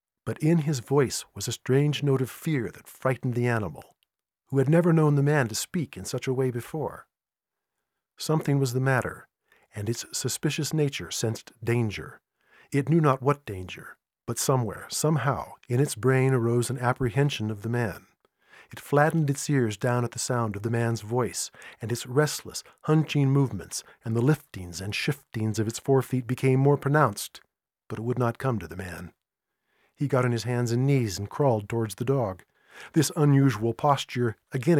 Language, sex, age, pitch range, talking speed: English, male, 50-69, 110-140 Hz, 185 wpm